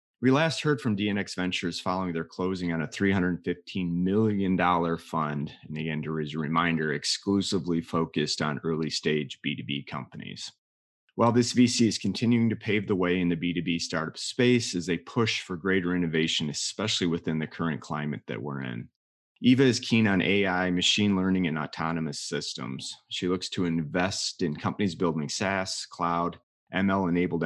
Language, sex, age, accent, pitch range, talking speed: English, male, 30-49, American, 80-100 Hz, 160 wpm